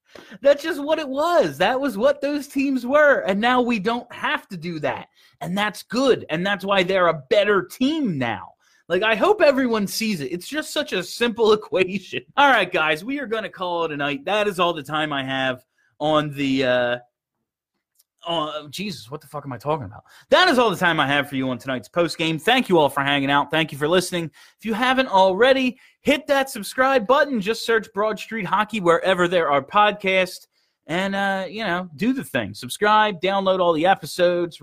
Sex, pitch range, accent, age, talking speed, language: male, 150-225 Hz, American, 30-49, 215 wpm, English